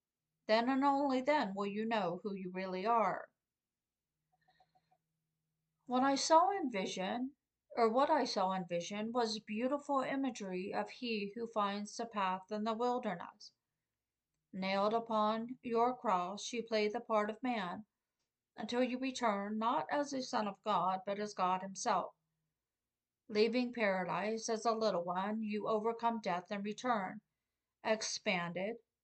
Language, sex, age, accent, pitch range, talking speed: English, female, 50-69, American, 190-240 Hz, 145 wpm